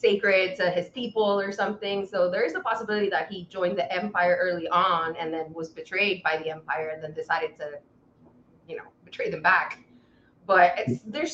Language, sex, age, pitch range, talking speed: English, female, 20-39, 170-220 Hz, 195 wpm